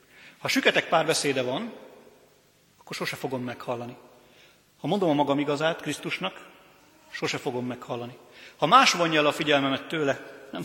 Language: Hungarian